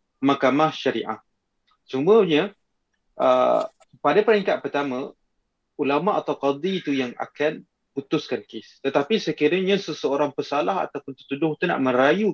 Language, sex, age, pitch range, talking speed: Malay, male, 30-49, 130-160 Hz, 115 wpm